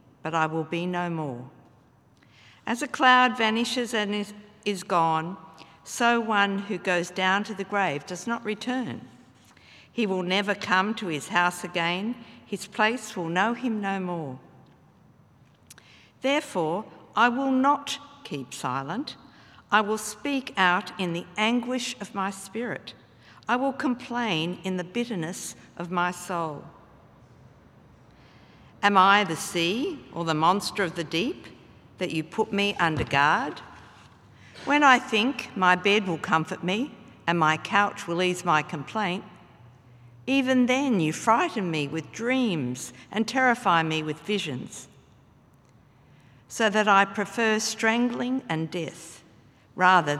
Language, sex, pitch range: English, female, 160-220 Hz